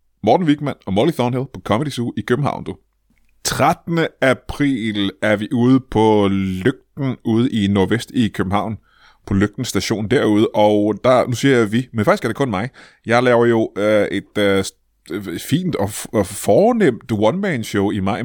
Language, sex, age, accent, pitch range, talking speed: Danish, male, 30-49, native, 100-125 Hz, 175 wpm